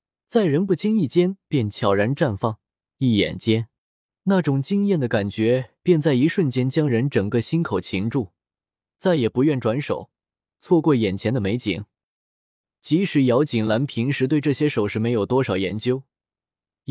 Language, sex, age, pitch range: Chinese, male, 20-39, 110-160 Hz